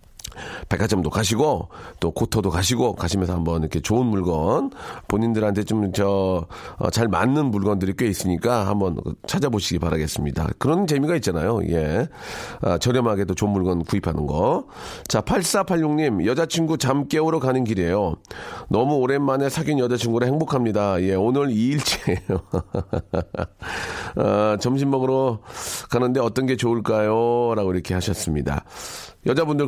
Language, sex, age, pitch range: Korean, male, 40-59, 100-140 Hz